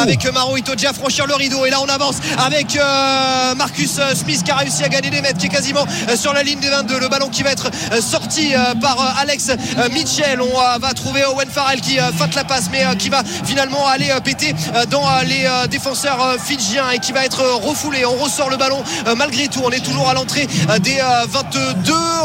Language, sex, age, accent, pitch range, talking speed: French, male, 20-39, French, 245-285 Hz, 200 wpm